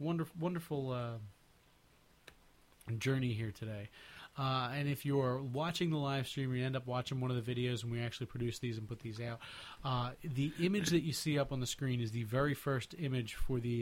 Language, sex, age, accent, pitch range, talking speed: English, male, 30-49, American, 125-150 Hz, 205 wpm